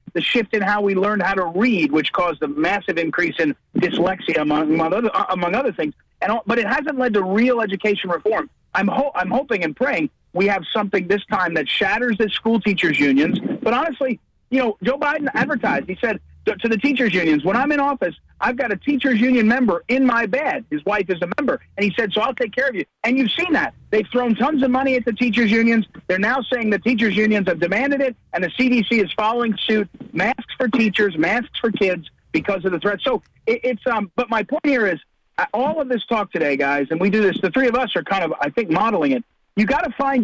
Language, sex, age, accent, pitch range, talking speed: English, male, 40-59, American, 195-255 Hz, 235 wpm